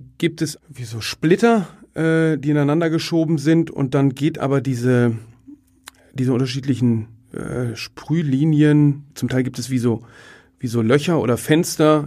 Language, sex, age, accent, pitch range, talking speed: German, male, 40-59, German, 125-150 Hz, 150 wpm